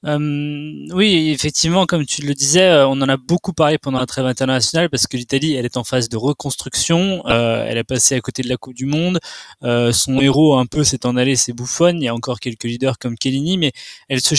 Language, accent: French, French